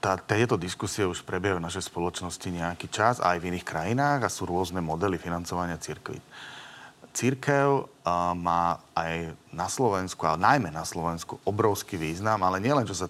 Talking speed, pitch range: 160 wpm, 85-110 Hz